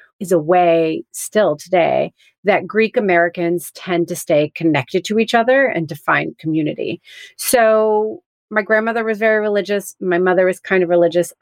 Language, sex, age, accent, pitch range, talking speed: English, female, 30-49, American, 175-225 Hz, 160 wpm